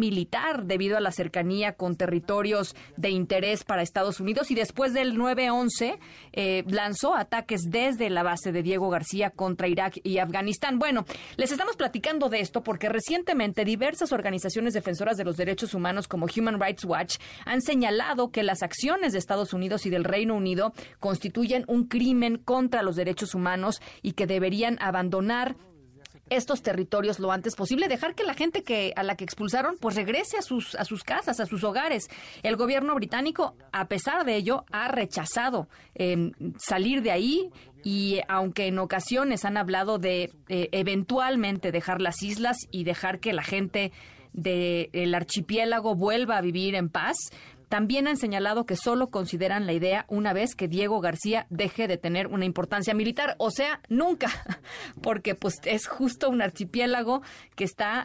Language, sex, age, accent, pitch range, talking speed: Spanish, female, 30-49, Mexican, 185-235 Hz, 170 wpm